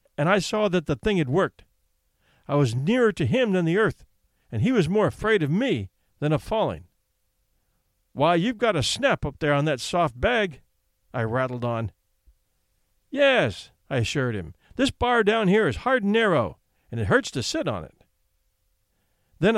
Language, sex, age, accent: English, male, 50-69, American